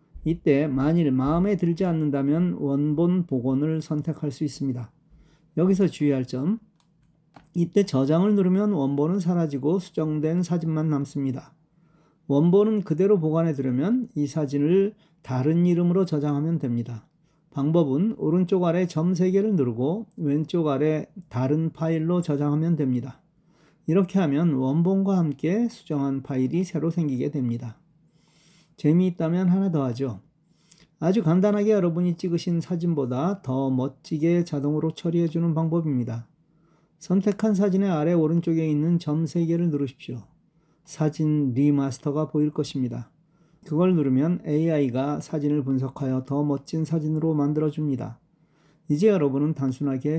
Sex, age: male, 40-59